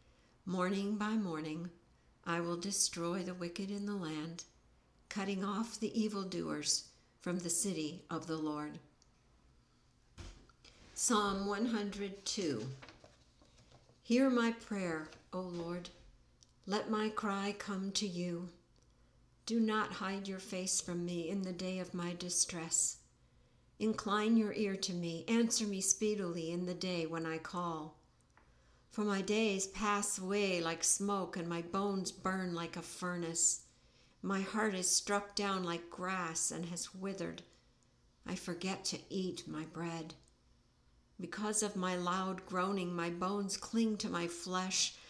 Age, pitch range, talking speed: 60-79, 170-200 Hz, 135 wpm